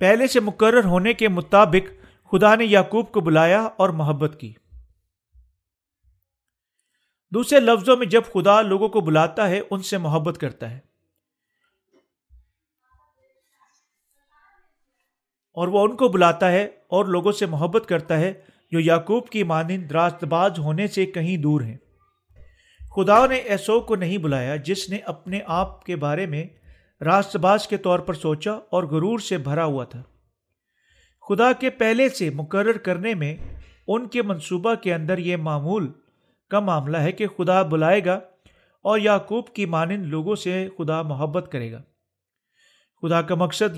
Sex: male